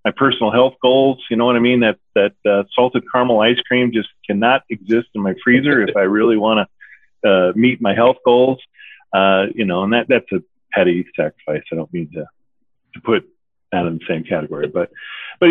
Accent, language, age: American, English, 40-59